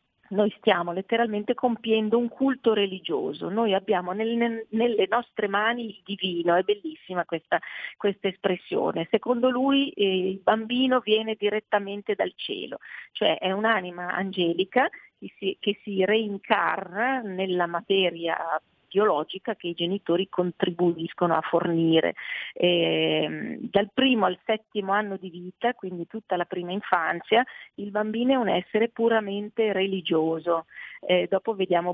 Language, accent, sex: Italian, native, female